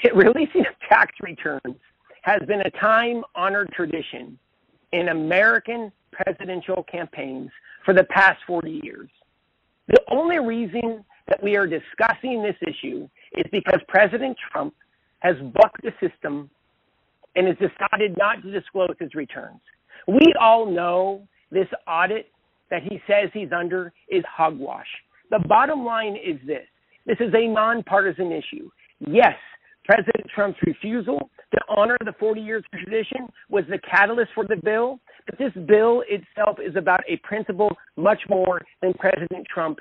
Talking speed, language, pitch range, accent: 145 wpm, English, 185-230 Hz, American